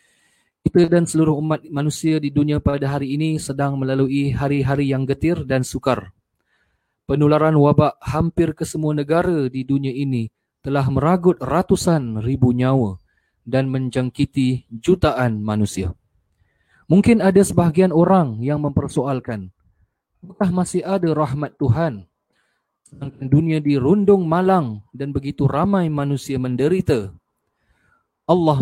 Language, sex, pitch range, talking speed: Malay, male, 130-155 Hz, 115 wpm